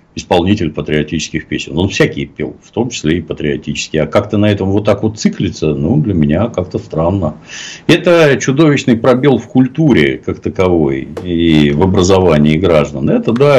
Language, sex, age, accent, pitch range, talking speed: Russian, male, 60-79, native, 75-105 Hz, 165 wpm